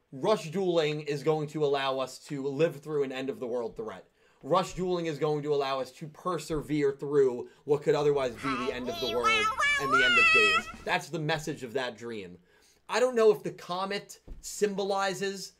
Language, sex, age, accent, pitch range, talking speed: English, male, 30-49, American, 145-180 Hz, 190 wpm